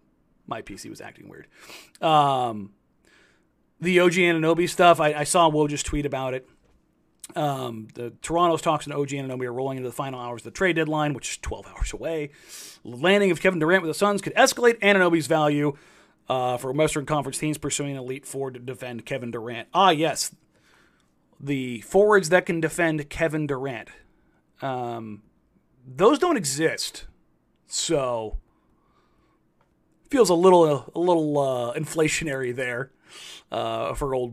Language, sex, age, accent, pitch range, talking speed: English, male, 30-49, American, 135-175 Hz, 155 wpm